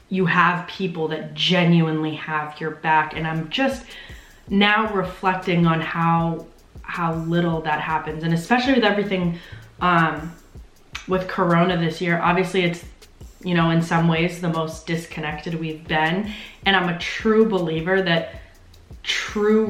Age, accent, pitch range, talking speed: 20-39, American, 160-185 Hz, 145 wpm